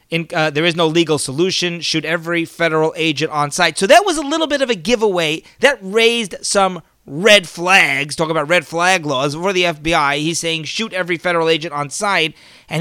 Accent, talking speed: American, 205 wpm